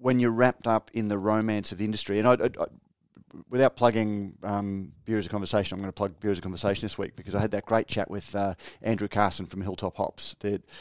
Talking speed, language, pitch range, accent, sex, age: 250 wpm, English, 100-110 Hz, Australian, male, 30-49